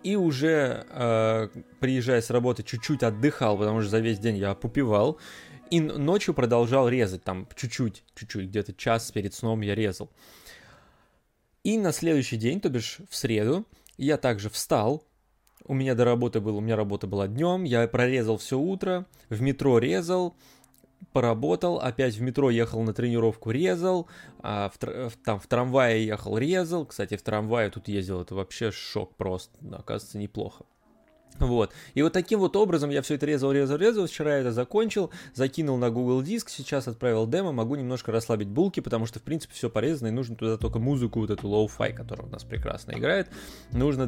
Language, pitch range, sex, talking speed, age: Russian, 110-145 Hz, male, 175 wpm, 20-39